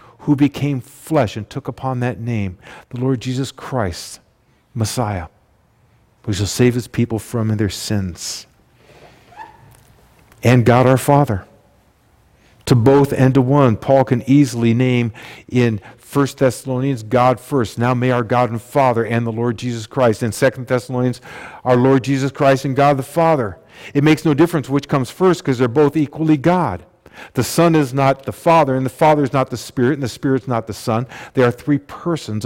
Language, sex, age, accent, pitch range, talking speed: English, male, 50-69, American, 115-135 Hz, 180 wpm